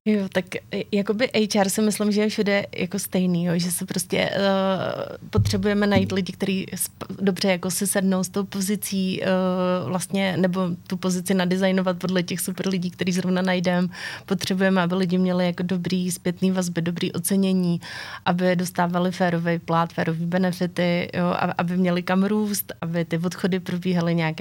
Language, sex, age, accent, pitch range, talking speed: Czech, female, 30-49, native, 175-190 Hz, 165 wpm